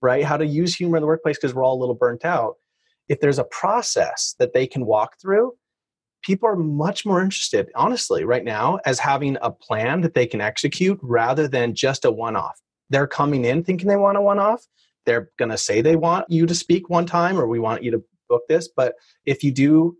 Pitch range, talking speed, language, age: 120-165 Hz, 225 wpm, English, 30-49